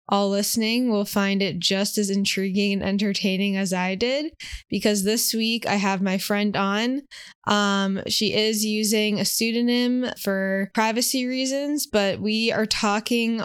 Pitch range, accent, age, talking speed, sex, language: 190-215 Hz, American, 20-39, 150 wpm, female, English